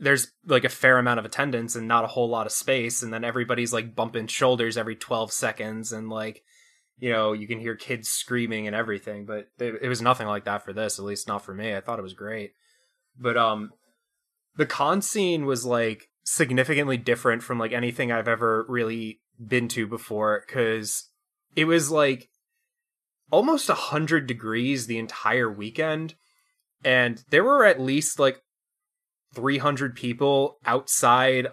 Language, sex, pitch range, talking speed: English, male, 115-135 Hz, 170 wpm